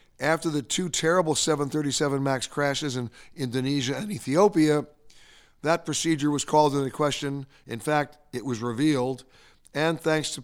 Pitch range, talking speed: 130-155 Hz, 145 wpm